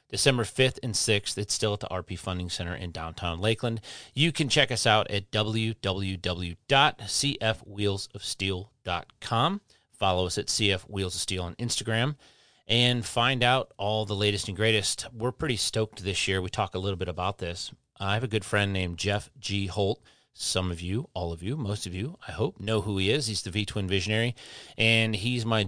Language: English